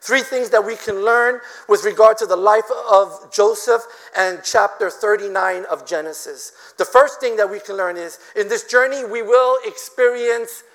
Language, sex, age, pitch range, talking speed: English, male, 50-69, 225-305 Hz, 180 wpm